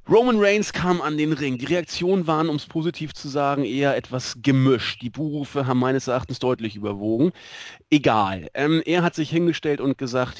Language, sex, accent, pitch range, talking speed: German, male, German, 125-170 Hz, 185 wpm